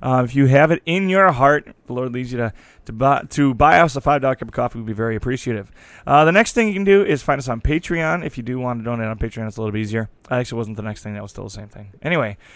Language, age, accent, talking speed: English, 30-49, American, 320 wpm